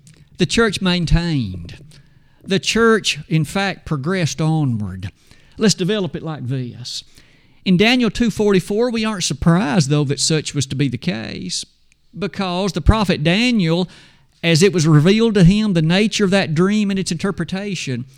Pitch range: 140-200 Hz